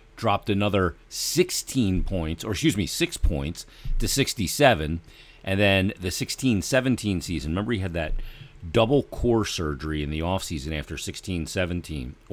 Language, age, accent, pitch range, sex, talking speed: English, 40-59, American, 85-115 Hz, male, 135 wpm